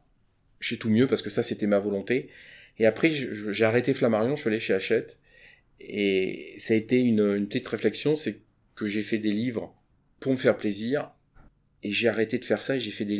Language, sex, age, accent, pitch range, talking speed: French, male, 30-49, French, 100-120 Hz, 225 wpm